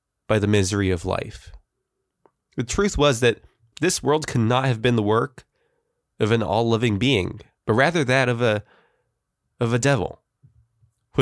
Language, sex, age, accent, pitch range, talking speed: English, male, 20-39, American, 105-140 Hz, 165 wpm